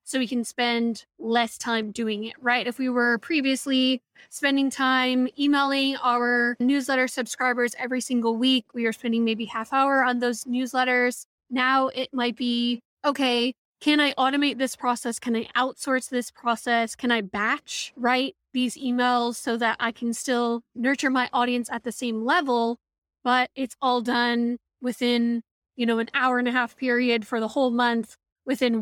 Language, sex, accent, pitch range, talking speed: English, female, American, 235-260 Hz, 170 wpm